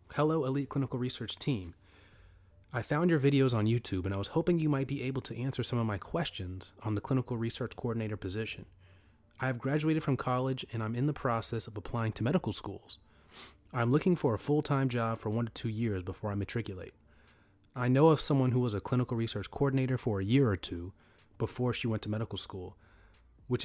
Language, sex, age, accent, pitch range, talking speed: English, male, 30-49, American, 100-130 Hz, 210 wpm